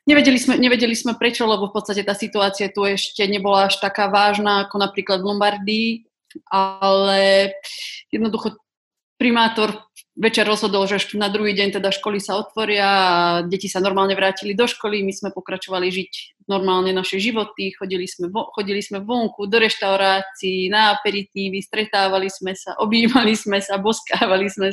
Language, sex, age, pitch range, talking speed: Slovak, female, 30-49, 195-215 Hz, 155 wpm